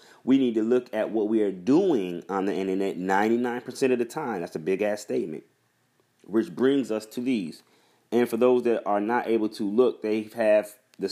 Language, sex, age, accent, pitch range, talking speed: English, male, 30-49, American, 95-120 Hz, 200 wpm